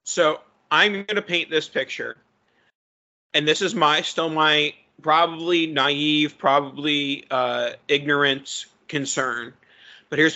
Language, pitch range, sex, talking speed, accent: English, 135-150 Hz, male, 120 wpm, American